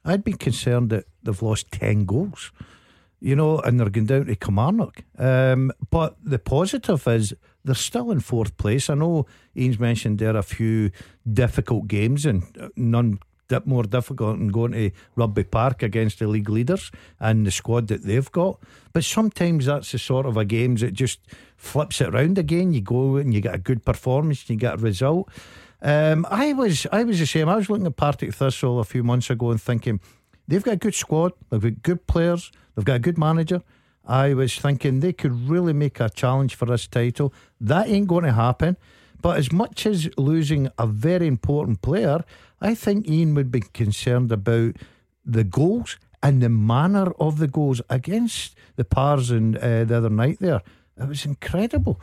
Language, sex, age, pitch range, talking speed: English, male, 50-69, 115-155 Hz, 195 wpm